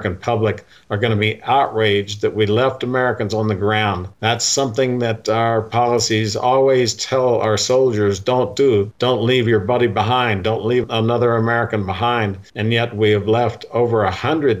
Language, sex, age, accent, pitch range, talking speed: English, male, 50-69, American, 105-120 Hz, 175 wpm